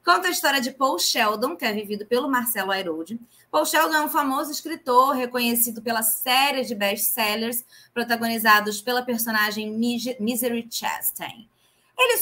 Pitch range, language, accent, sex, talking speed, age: 210-250 Hz, Portuguese, Brazilian, female, 140 wpm, 20-39